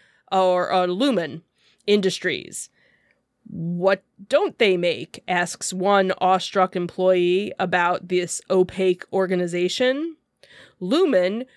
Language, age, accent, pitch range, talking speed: English, 30-49, American, 185-250 Hz, 90 wpm